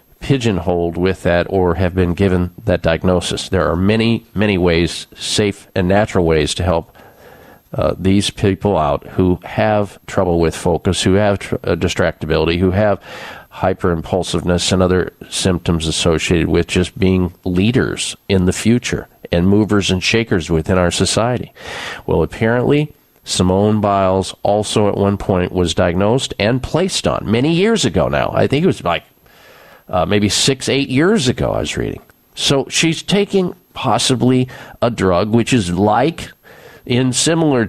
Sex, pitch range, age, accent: male, 90-120 Hz, 50-69, American